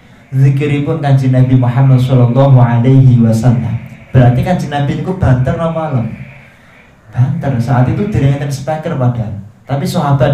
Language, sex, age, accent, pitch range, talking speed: Indonesian, male, 20-39, native, 120-135 Hz, 130 wpm